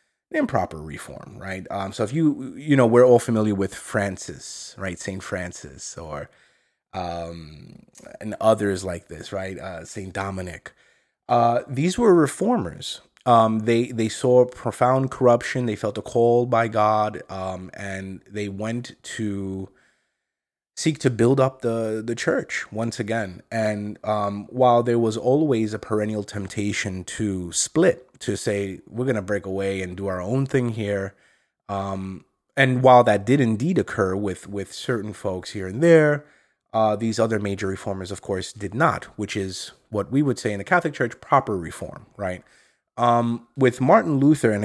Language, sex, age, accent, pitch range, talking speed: English, male, 30-49, American, 95-125 Hz, 165 wpm